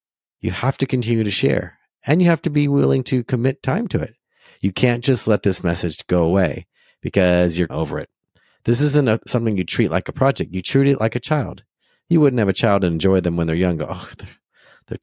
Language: English